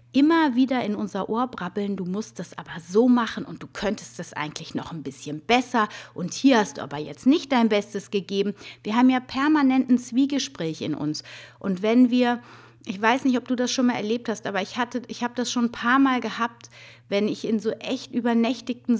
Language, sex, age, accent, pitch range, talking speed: German, female, 30-49, German, 200-255 Hz, 215 wpm